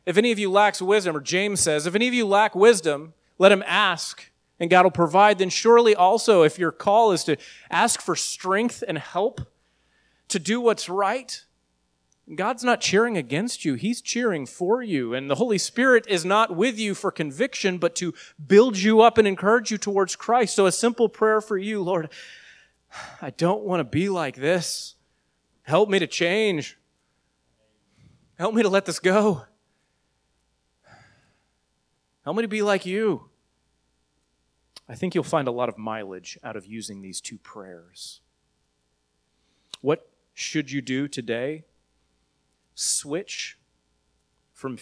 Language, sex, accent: English, male, American